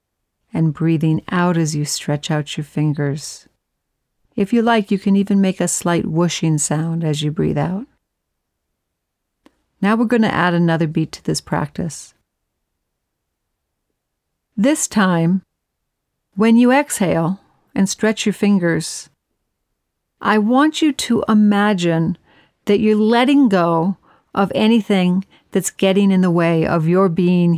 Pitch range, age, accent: 165-205 Hz, 50-69, American